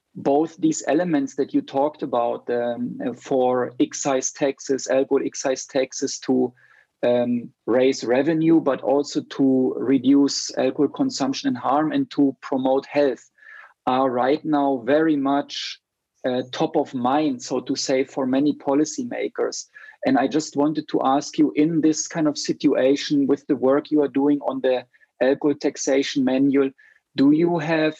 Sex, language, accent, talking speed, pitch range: male, English, German, 150 wpm, 130-155 Hz